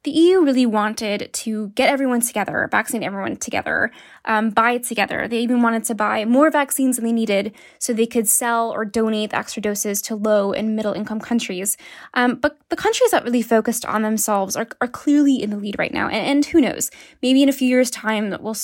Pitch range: 215-255 Hz